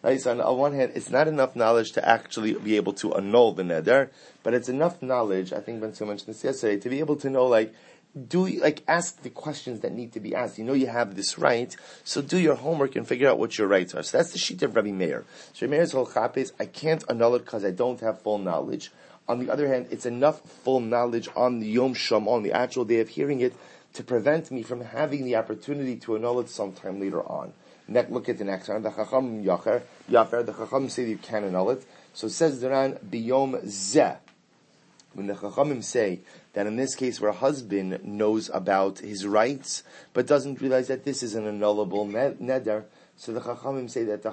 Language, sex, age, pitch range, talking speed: English, male, 30-49, 110-135 Hz, 220 wpm